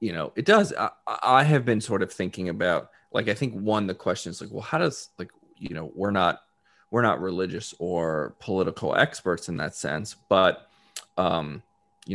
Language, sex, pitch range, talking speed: English, male, 90-115 Hz, 200 wpm